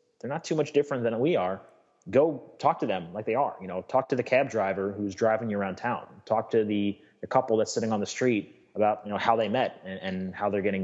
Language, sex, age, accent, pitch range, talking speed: English, male, 30-49, American, 95-115 Hz, 265 wpm